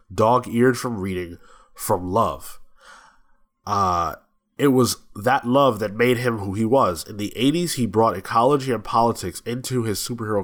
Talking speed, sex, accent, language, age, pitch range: 155 wpm, male, American, English, 20-39, 95-125 Hz